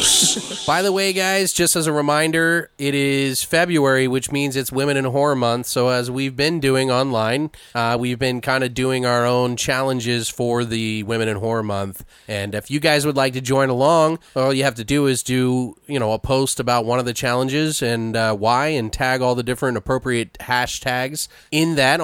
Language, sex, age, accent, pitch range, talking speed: English, male, 30-49, American, 125-160 Hz, 205 wpm